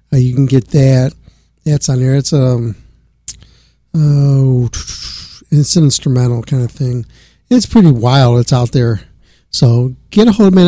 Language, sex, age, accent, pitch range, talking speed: English, male, 50-69, American, 125-150 Hz, 155 wpm